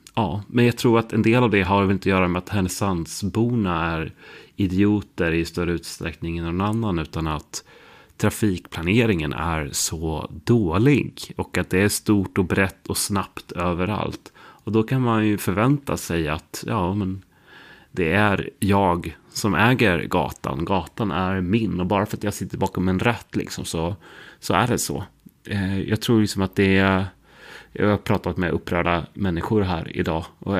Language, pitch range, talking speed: Swedish, 90-110 Hz, 175 wpm